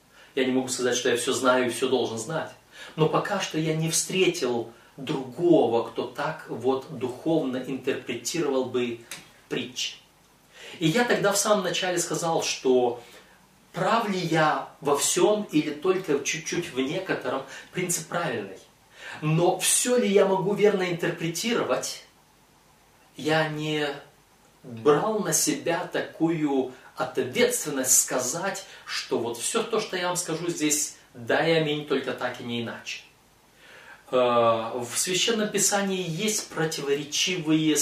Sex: male